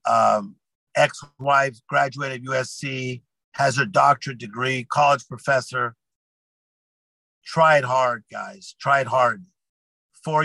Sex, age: male, 50-69